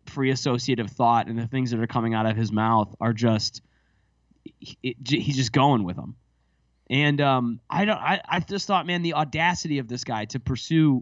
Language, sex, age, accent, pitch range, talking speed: English, male, 20-39, American, 120-150 Hz, 195 wpm